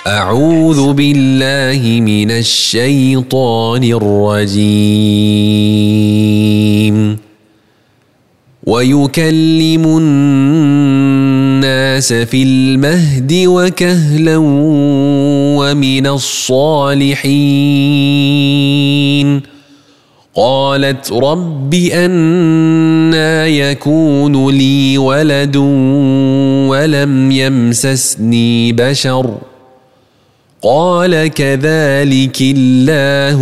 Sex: male